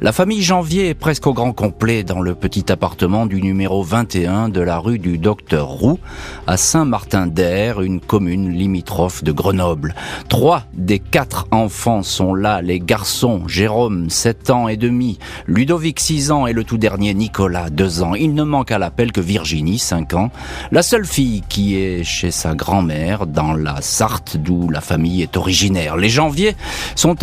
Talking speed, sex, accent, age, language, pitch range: 175 wpm, male, French, 40-59, French, 90-125 Hz